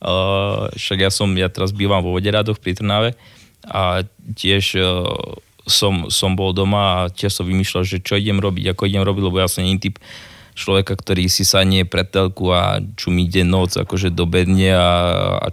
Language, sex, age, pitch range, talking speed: Slovak, male, 20-39, 95-105 Hz, 190 wpm